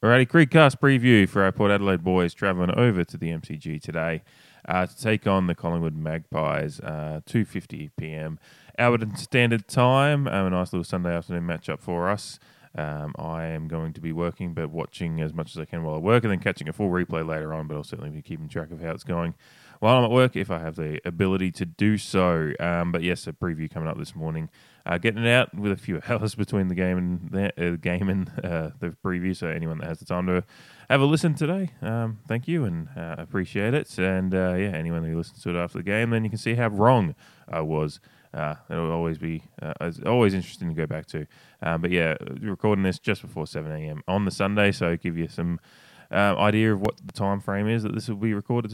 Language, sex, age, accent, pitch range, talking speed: English, male, 20-39, Australian, 80-110 Hz, 230 wpm